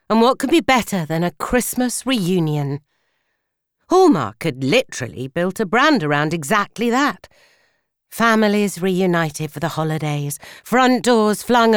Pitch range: 155-210 Hz